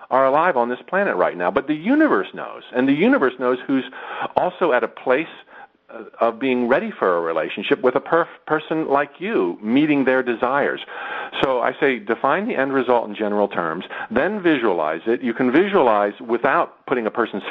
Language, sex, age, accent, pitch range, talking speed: English, male, 50-69, American, 110-160 Hz, 185 wpm